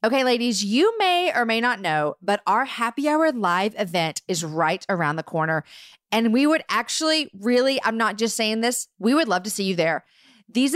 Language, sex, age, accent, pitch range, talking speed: English, female, 40-59, American, 185-245 Hz, 205 wpm